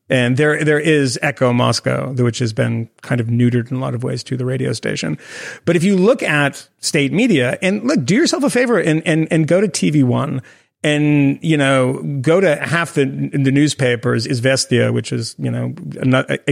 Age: 30-49